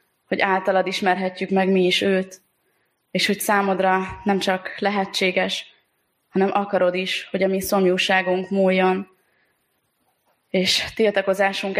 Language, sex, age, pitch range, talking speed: Hungarian, female, 20-39, 185-195 Hz, 115 wpm